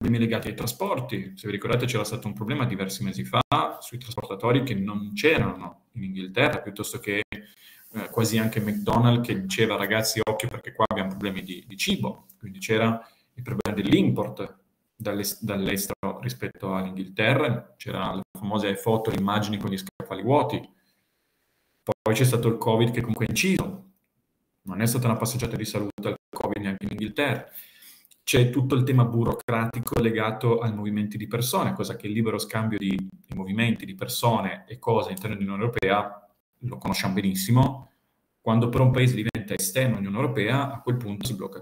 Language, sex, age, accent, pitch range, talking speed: Italian, male, 40-59, native, 100-120 Hz, 165 wpm